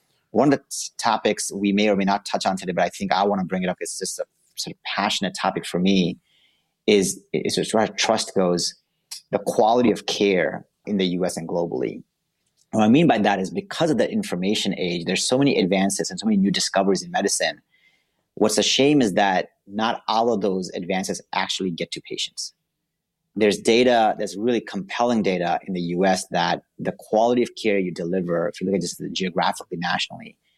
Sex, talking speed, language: male, 205 wpm, English